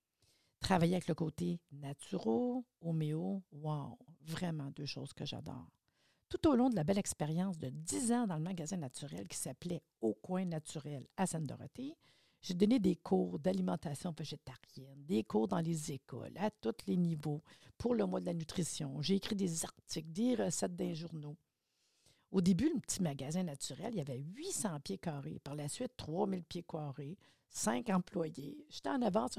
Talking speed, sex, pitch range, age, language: 175 wpm, female, 150-195 Hz, 50-69, French